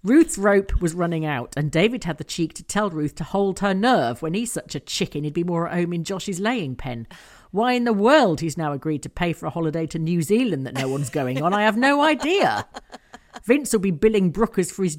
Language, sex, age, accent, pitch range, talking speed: English, female, 40-59, British, 155-210 Hz, 250 wpm